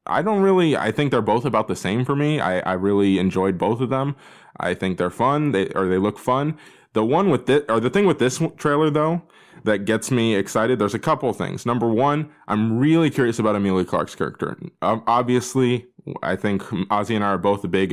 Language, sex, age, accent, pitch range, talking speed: English, male, 20-39, American, 95-130 Hz, 220 wpm